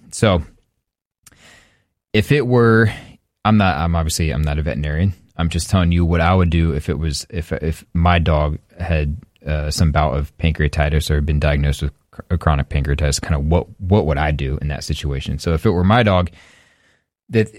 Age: 20-39